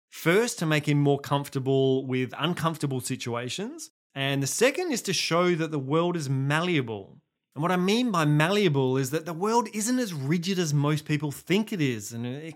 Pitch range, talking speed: 135-185 Hz, 195 wpm